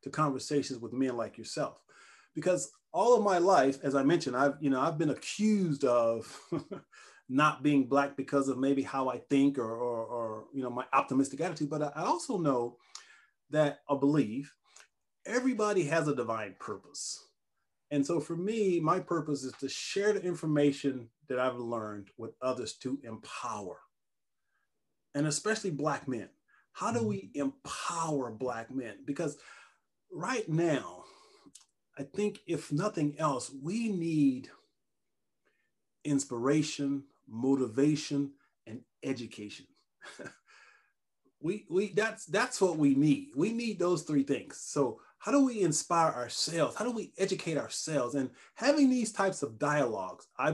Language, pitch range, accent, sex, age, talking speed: English, 135-175 Hz, American, male, 30-49, 145 wpm